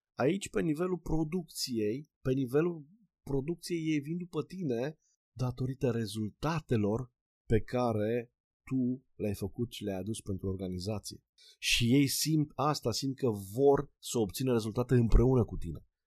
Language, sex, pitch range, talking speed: Romanian, male, 105-135 Hz, 135 wpm